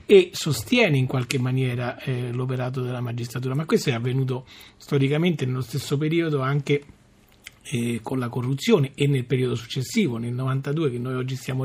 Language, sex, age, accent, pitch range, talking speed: Italian, male, 40-59, native, 130-165 Hz, 165 wpm